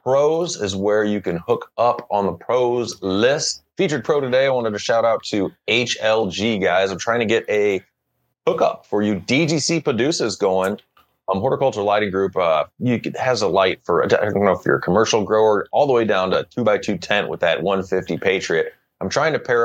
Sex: male